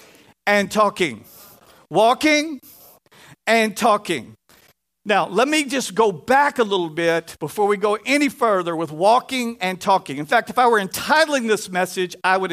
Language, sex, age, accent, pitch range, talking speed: English, male, 50-69, American, 175-245 Hz, 160 wpm